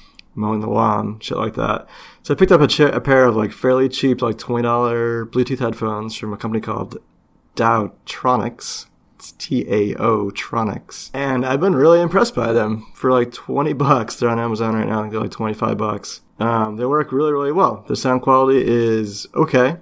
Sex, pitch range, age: male, 110-125 Hz, 30-49